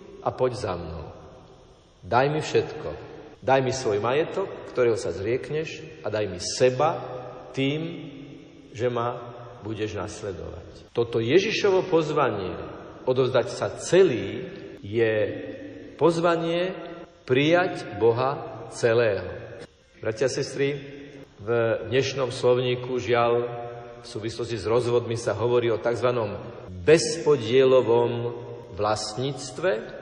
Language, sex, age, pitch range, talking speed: Slovak, male, 50-69, 120-155 Hz, 100 wpm